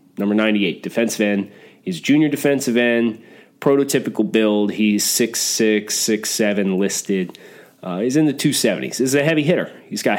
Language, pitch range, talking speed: English, 105-130 Hz, 165 wpm